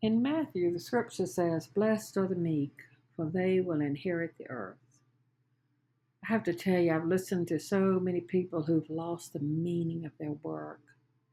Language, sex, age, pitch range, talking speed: English, female, 60-79, 145-185 Hz, 175 wpm